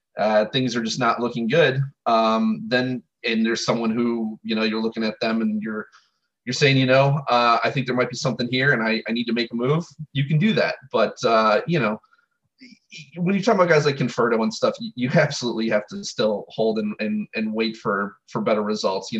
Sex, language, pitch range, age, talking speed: male, English, 110-140 Hz, 30-49, 230 wpm